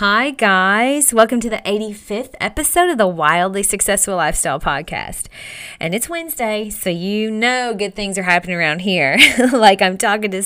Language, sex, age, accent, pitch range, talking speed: English, female, 30-49, American, 180-220 Hz, 165 wpm